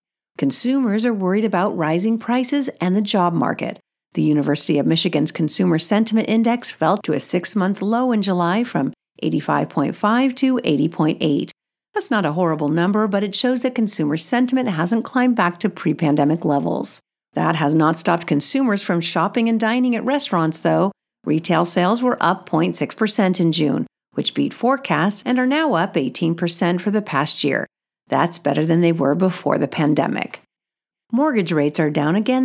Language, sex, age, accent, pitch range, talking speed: English, female, 50-69, American, 165-245 Hz, 165 wpm